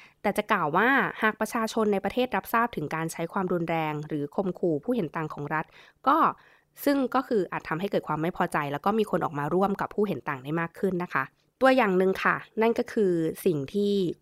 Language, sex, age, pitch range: Thai, female, 20-39, 160-200 Hz